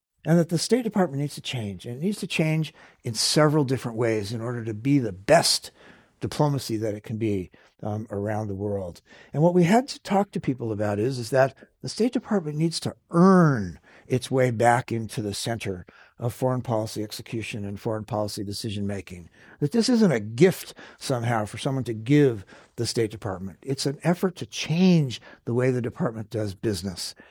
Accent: American